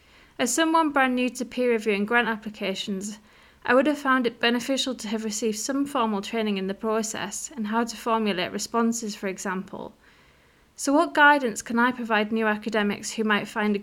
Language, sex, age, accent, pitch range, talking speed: English, female, 30-49, British, 210-250 Hz, 185 wpm